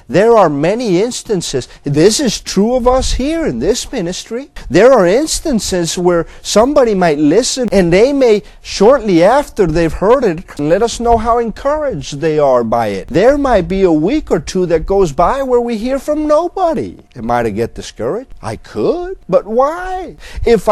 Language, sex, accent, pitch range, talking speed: English, male, American, 165-250 Hz, 175 wpm